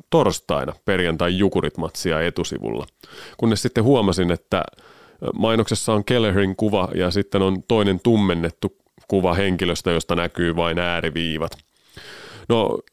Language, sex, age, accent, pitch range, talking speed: Finnish, male, 30-49, native, 85-110 Hz, 115 wpm